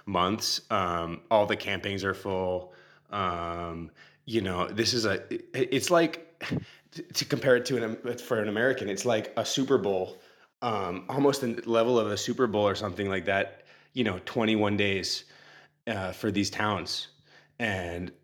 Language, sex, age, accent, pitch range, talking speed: English, male, 20-39, American, 90-110 Hz, 170 wpm